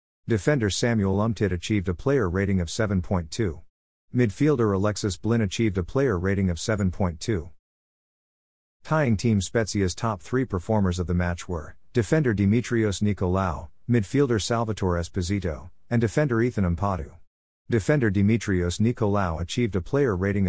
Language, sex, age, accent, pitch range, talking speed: English, male, 50-69, American, 90-115 Hz, 130 wpm